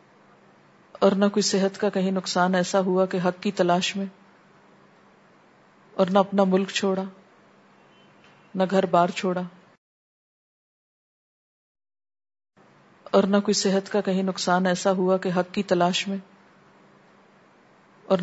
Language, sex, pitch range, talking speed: Urdu, female, 180-235 Hz, 125 wpm